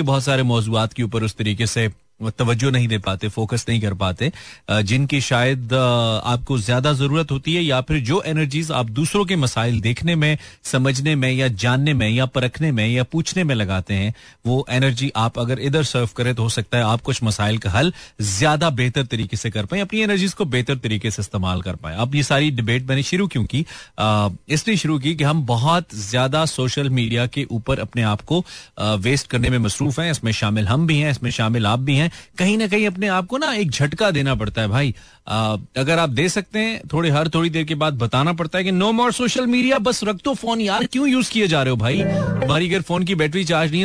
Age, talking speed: 30-49, 185 wpm